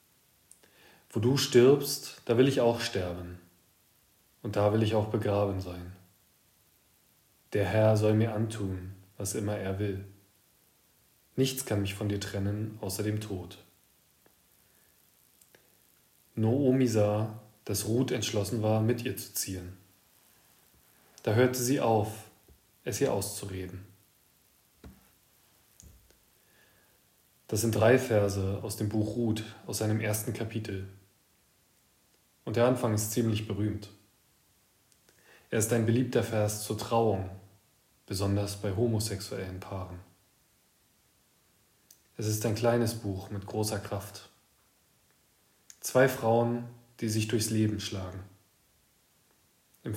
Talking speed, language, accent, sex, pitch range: 115 wpm, German, German, male, 100-115 Hz